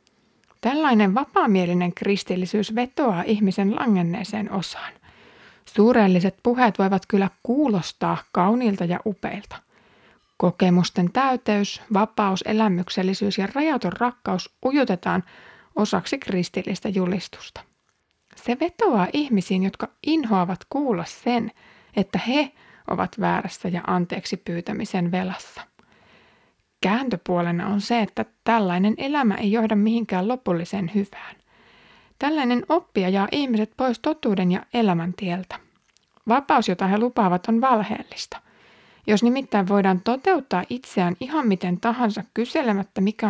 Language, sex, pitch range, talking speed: Finnish, female, 185-240 Hz, 105 wpm